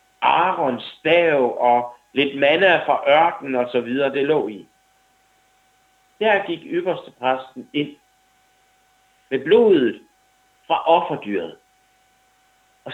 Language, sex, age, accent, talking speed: Danish, male, 60-79, native, 105 wpm